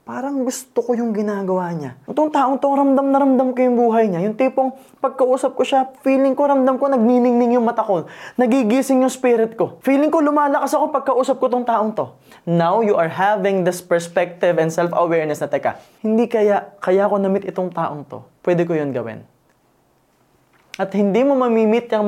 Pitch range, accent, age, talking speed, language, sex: 155-220 Hz, native, 20-39, 190 wpm, Filipino, male